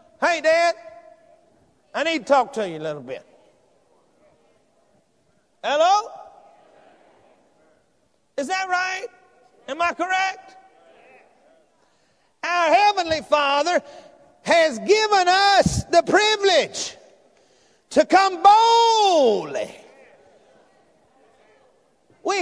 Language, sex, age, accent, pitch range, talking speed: English, male, 50-69, American, 230-365 Hz, 80 wpm